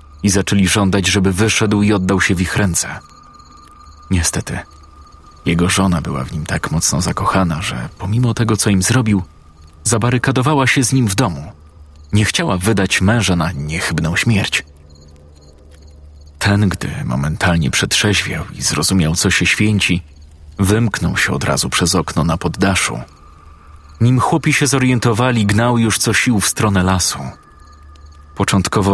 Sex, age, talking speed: male, 40-59, 140 wpm